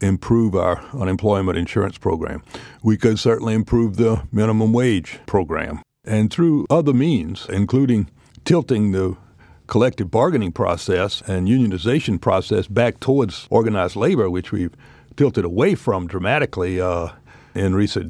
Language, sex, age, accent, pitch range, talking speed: English, male, 60-79, American, 100-125 Hz, 130 wpm